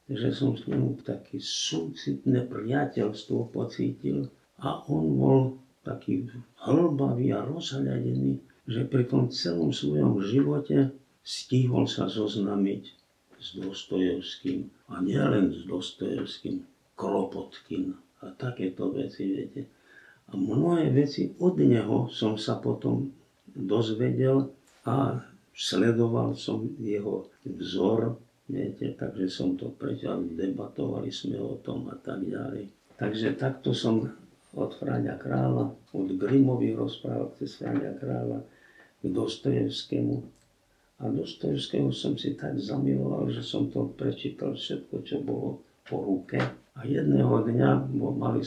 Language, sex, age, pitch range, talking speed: Slovak, male, 50-69, 90-135 Hz, 115 wpm